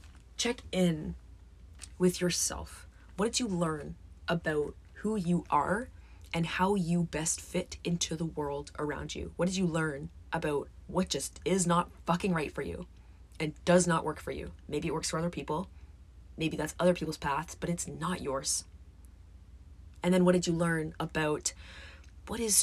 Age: 20-39